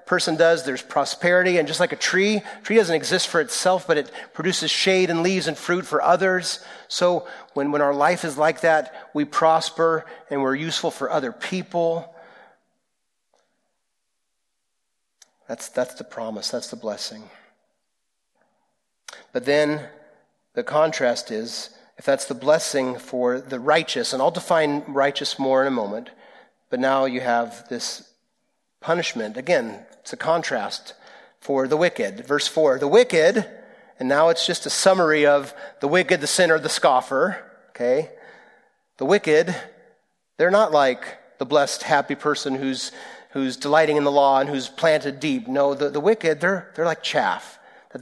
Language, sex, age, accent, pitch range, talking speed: English, male, 40-59, American, 135-175 Hz, 160 wpm